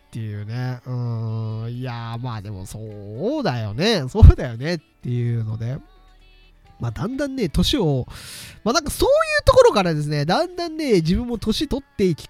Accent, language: native, Japanese